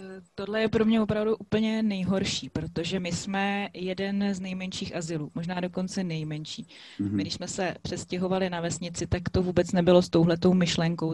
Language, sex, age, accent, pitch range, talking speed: Czech, female, 20-39, native, 165-190 Hz, 165 wpm